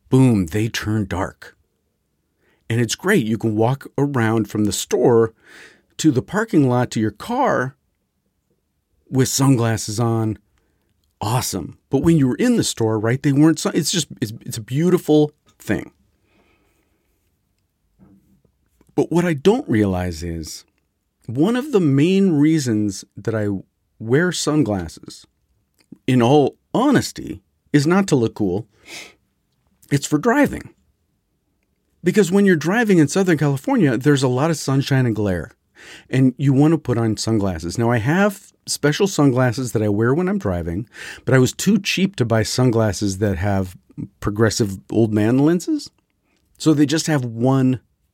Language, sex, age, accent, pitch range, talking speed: English, male, 50-69, American, 110-150 Hz, 150 wpm